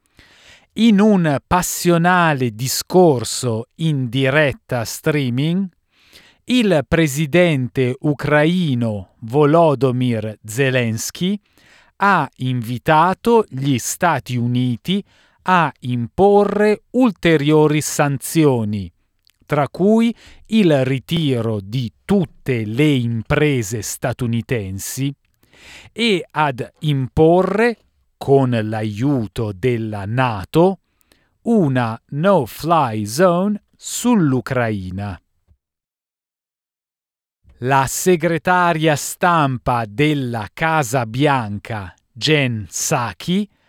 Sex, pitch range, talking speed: male, 120-170 Hz, 65 wpm